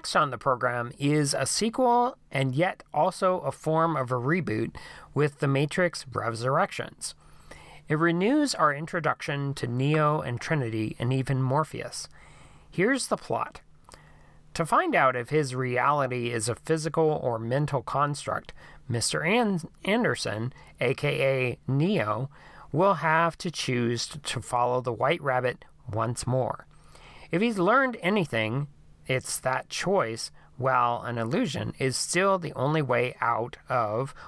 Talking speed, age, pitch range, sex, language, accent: 135 wpm, 40-59, 125-165 Hz, male, English, American